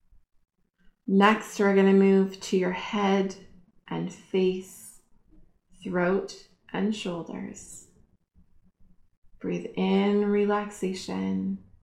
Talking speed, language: 80 wpm, English